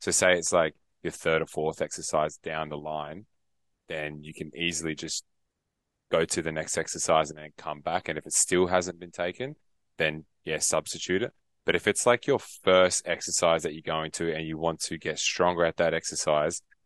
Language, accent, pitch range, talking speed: English, Australian, 80-90 Hz, 205 wpm